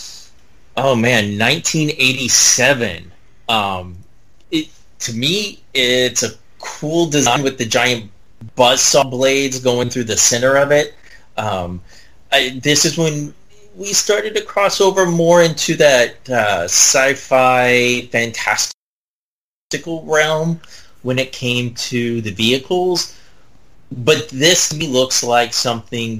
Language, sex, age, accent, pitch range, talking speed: English, male, 30-49, American, 110-145 Hz, 120 wpm